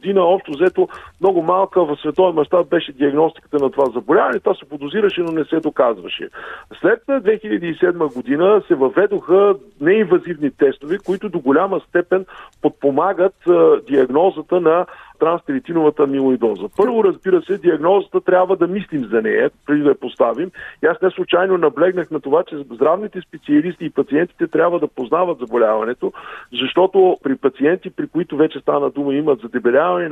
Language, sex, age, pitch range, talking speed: Bulgarian, male, 50-69, 140-190 Hz, 150 wpm